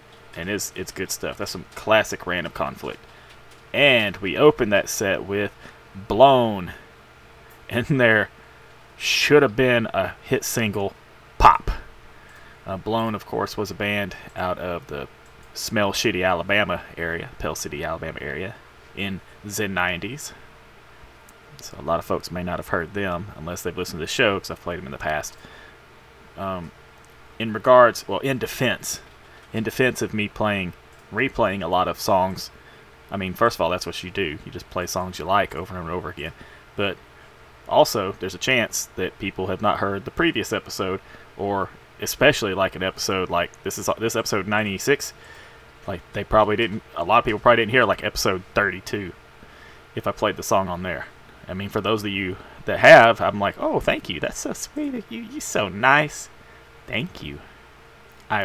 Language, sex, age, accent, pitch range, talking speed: English, male, 20-39, American, 90-115 Hz, 180 wpm